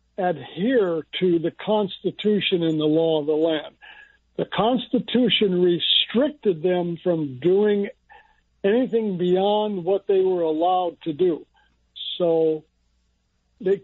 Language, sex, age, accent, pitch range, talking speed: English, male, 60-79, American, 155-210 Hz, 115 wpm